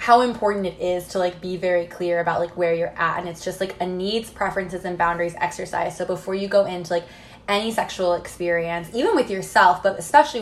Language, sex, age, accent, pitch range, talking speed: English, female, 20-39, American, 175-200 Hz, 220 wpm